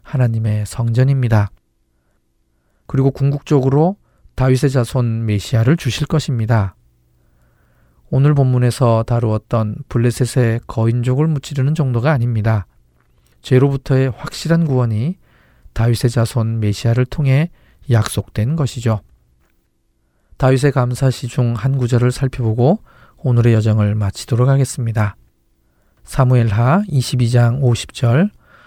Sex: male